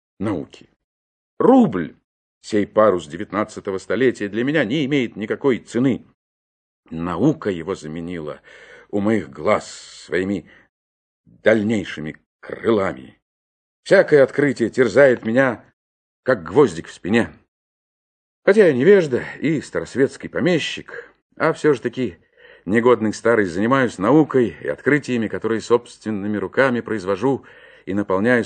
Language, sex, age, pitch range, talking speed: Russian, male, 50-69, 95-150 Hz, 110 wpm